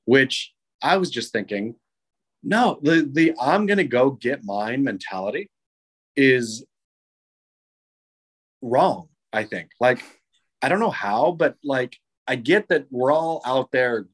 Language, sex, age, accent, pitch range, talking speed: English, male, 30-49, American, 105-145 Hz, 140 wpm